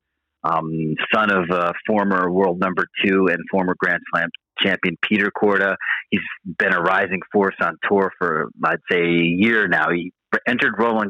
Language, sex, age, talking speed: English, male, 40-59, 175 wpm